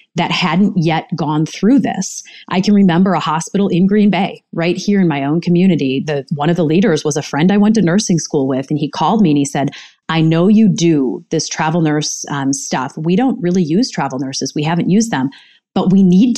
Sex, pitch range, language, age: female, 150-185 Hz, English, 30-49